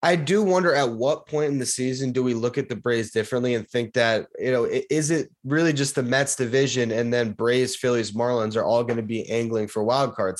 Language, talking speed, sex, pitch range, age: English, 240 wpm, male, 115-140 Hz, 20-39